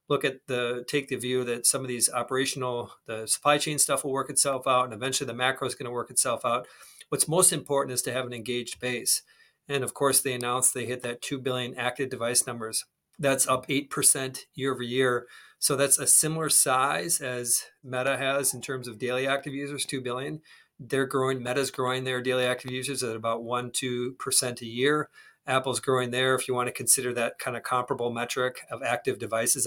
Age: 40-59